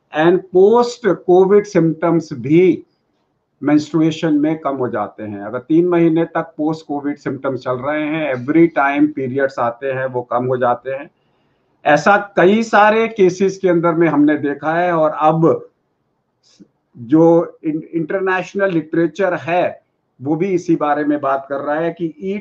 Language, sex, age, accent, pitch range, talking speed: Hindi, male, 50-69, native, 150-175 Hz, 155 wpm